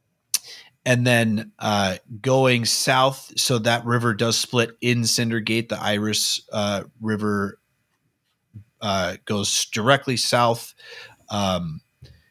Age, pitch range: 30-49, 100-120 Hz